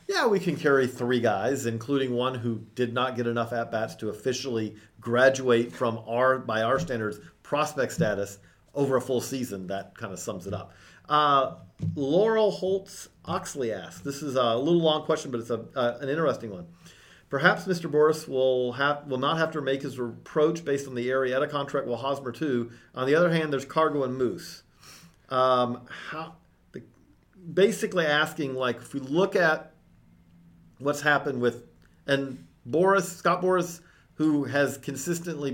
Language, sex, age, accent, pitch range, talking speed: English, male, 40-59, American, 115-145 Hz, 170 wpm